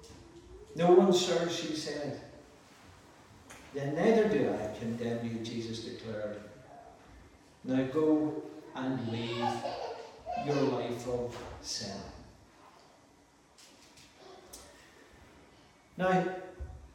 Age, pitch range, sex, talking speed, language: 50-69, 130-195 Hz, male, 80 wpm, English